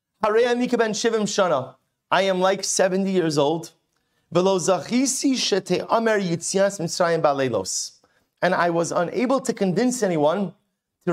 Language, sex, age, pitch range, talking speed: English, male, 30-49, 150-190 Hz, 75 wpm